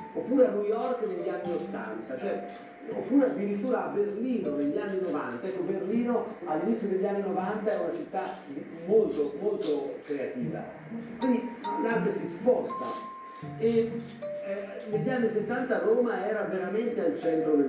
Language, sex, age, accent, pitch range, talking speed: Italian, male, 50-69, native, 150-225 Hz, 140 wpm